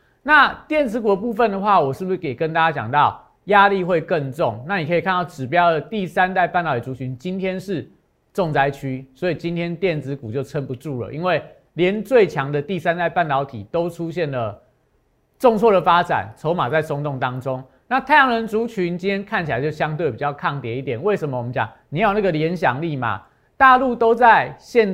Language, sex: Chinese, male